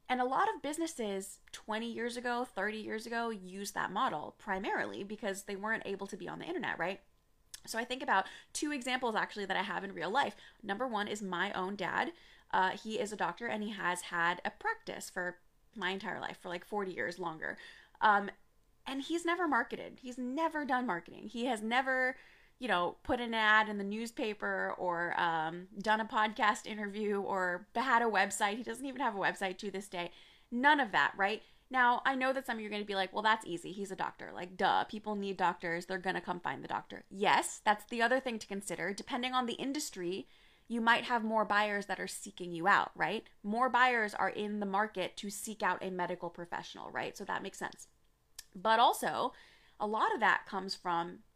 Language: English